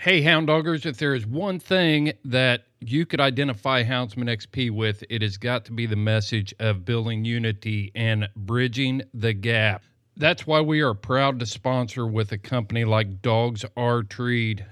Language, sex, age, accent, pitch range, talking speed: English, male, 40-59, American, 110-140 Hz, 170 wpm